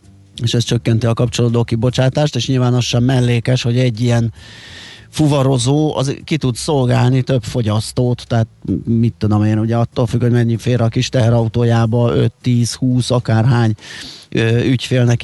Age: 30-49